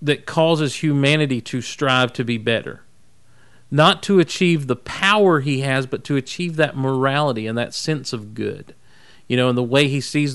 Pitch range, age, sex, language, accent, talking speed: 130-170 Hz, 40-59, male, English, American, 185 wpm